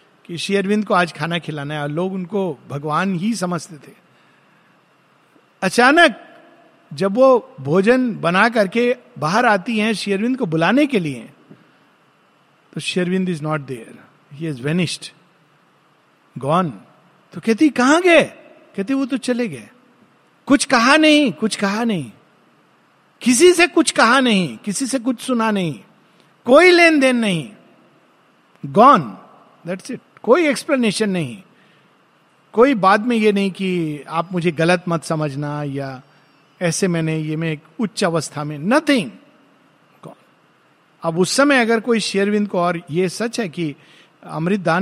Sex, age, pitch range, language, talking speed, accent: male, 50-69, 165-245 Hz, Hindi, 140 wpm, native